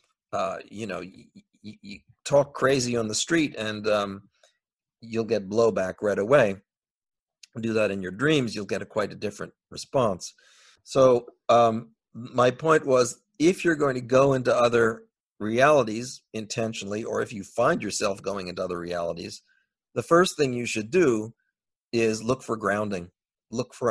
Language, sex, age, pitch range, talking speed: English, male, 50-69, 110-140 Hz, 160 wpm